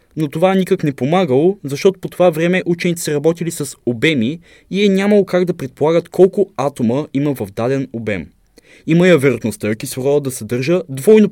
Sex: male